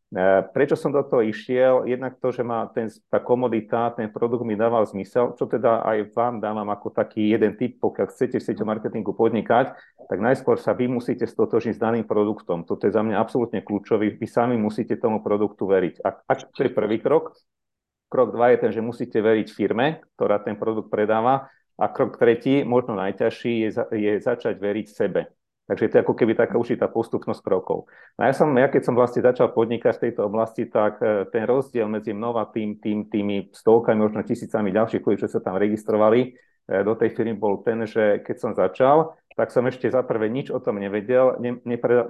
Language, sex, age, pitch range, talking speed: Slovak, male, 40-59, 105-120 Hz, 195 wpm